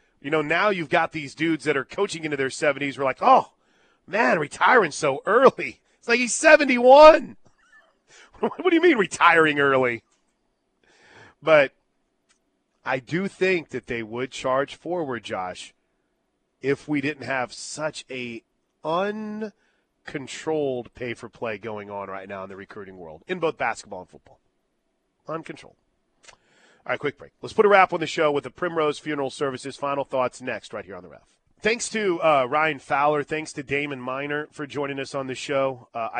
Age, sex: 40-59, male